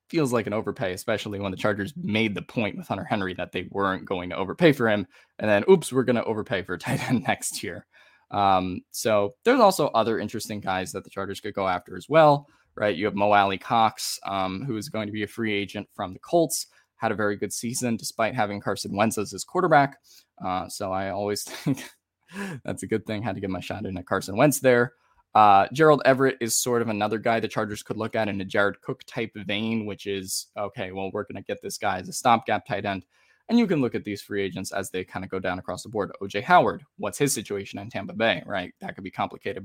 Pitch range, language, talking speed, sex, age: 100-120 Hz, English, 245 wpm, male, 10-29